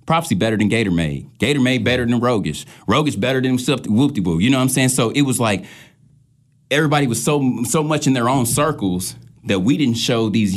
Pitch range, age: 110-145 Hz, 30-49